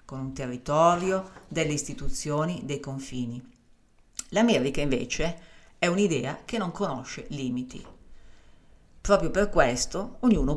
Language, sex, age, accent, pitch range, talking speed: Italian, female, 50-69, native, 135-175 Hz, 110 wpm